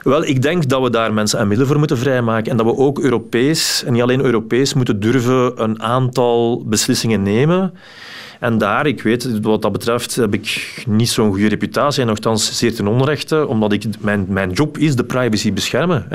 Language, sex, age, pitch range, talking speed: Dutch, male, 40-59, 110-140 Hz, 195 wpm